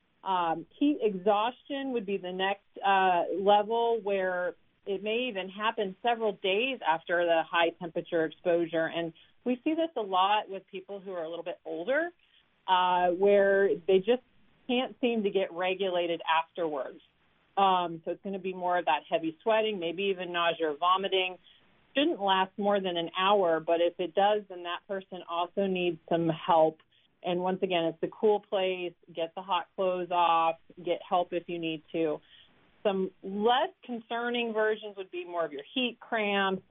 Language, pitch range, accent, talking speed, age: English, 170-205 Hz, American, 175 wpm, 40-59